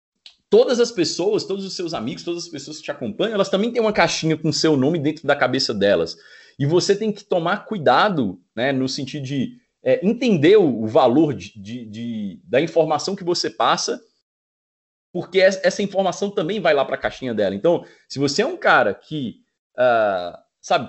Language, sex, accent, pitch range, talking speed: Portuguese, male, Brazilian, 140-205 Hz, 190 wpm